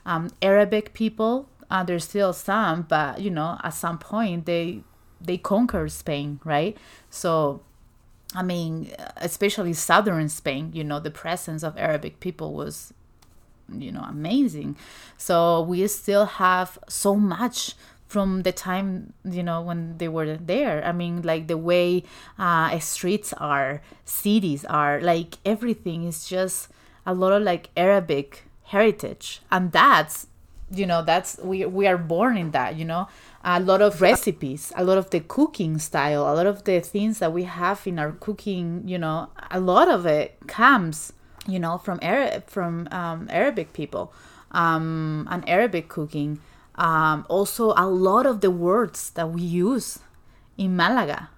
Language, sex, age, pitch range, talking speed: English, female, 20-39, 160-200 Hz, 160 wpm